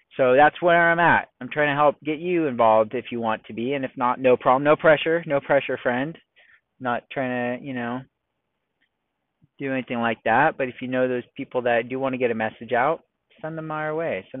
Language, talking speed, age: English, 230 wpm, 30-49